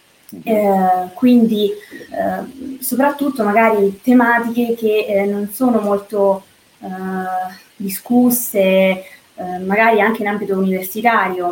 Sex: female